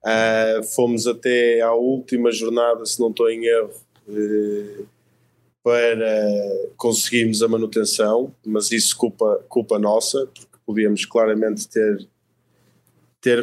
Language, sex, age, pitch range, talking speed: Portuguese, male, 20-39, 105-125 Hz, 105 wpm